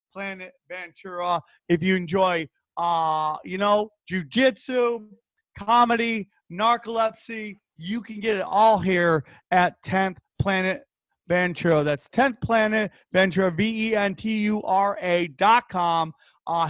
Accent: American